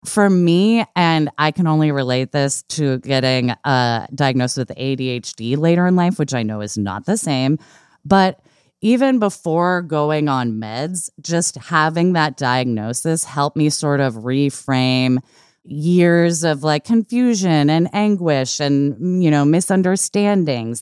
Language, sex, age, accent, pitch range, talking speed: English, female, 20-39, American, 130-170 Hz, 140 wpm